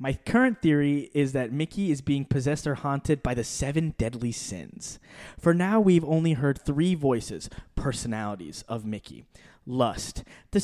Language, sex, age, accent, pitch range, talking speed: English, male, 20-39, American, 140-180 Hz, 160 wpm